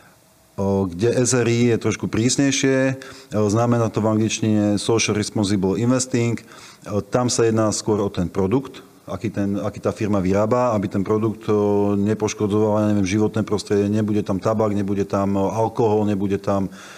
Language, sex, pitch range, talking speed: Slovak, male, 100-115 Hz, 140 wpm